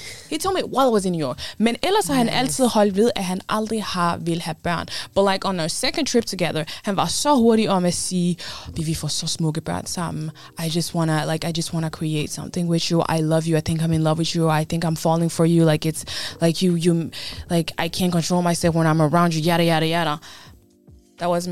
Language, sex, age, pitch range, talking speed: Danish, female, 20-39, 160-210 Hz, 200 wpm